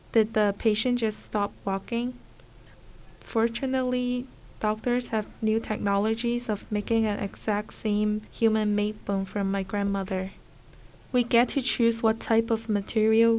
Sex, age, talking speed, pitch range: female, 10-29, 130 wpm, 200-225 Hz